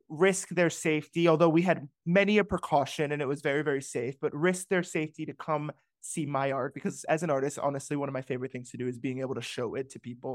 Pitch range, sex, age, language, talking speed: 130-160 Hz, male, 20-39, English, 255 wpm